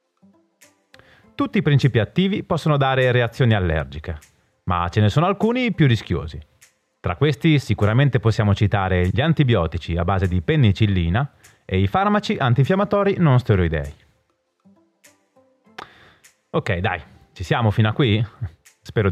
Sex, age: male, 30-49